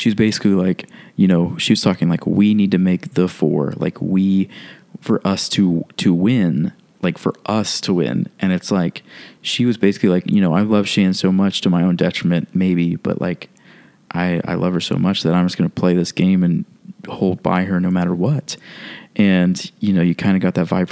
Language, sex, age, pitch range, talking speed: English, male, 20-39, 90-115 Hz, 225 wpm